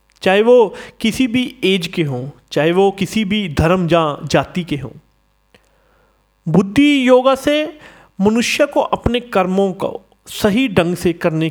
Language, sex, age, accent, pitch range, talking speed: Hindi, male, 40-59, native, 165-220 Hz, 150 wpm